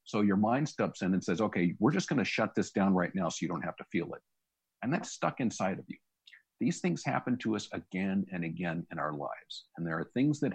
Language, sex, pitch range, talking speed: English, male, 90-110 Hz, 260 wpm